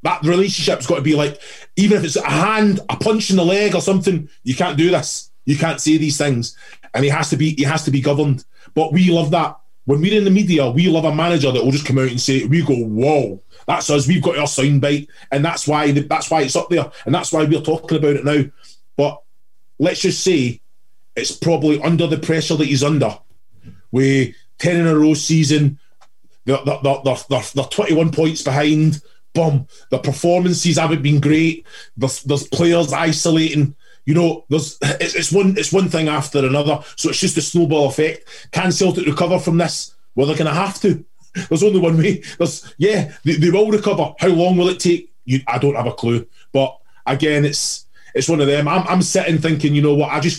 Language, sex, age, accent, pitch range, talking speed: English, male, 30-49, British, 145-170 Hz, 220 wpm